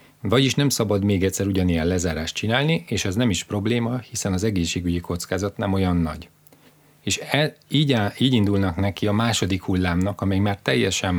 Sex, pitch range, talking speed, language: male, 90-110 Hz, 165 wpm, Hungarian